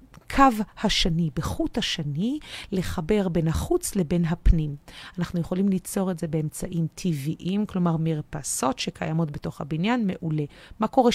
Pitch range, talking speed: 170-195 Hz, 130 wpm